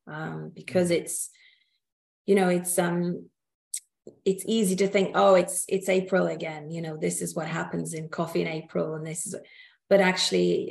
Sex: female